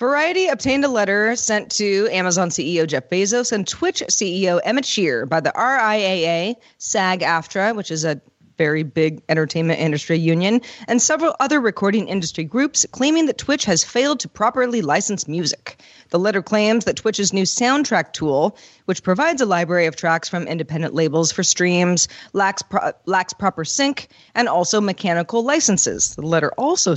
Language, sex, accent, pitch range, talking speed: English, female, American, 165-230 Hz, 160 wpm